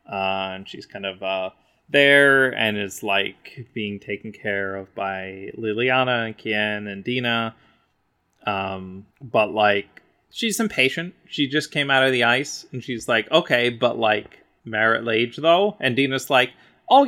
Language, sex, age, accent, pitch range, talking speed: English, male, 20-39, American, 110-145 Hz, 160 wpm